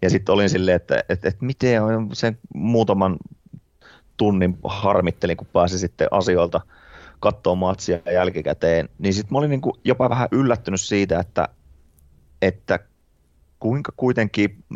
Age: 30-49